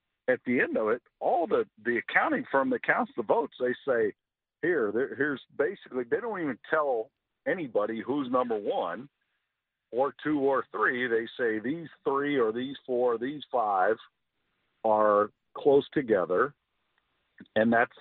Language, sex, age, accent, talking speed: English, male, 50-69, American, 155 wpm